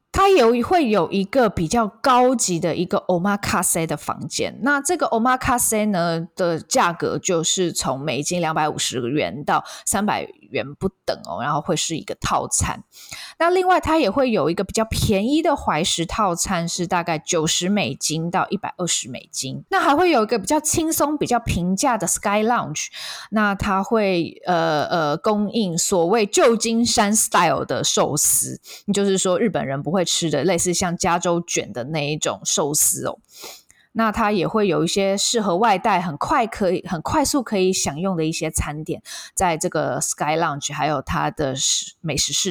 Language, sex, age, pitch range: Chinese, female, 20-39, 170-235 Hz